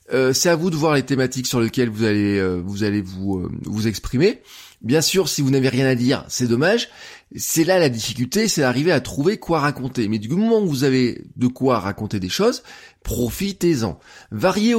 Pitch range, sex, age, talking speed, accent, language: 120-165 Hz, male, 20-39, 210 wpm, French, French